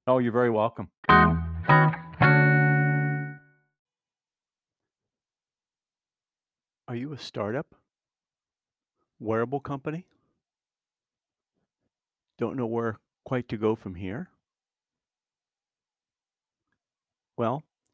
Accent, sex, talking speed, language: American, male, 65 wpm, English